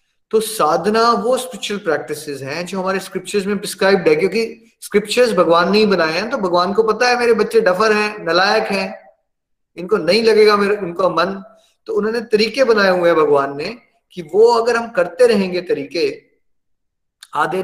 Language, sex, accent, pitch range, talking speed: Hindi, male, native, 150-205 Hz, 150 wpm